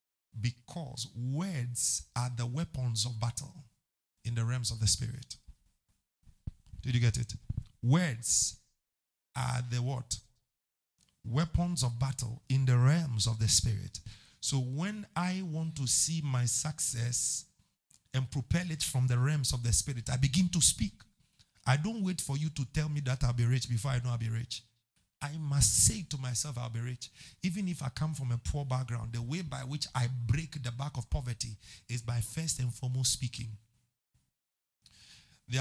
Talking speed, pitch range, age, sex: 170 wpm, 120-145 Hz, 50-69, male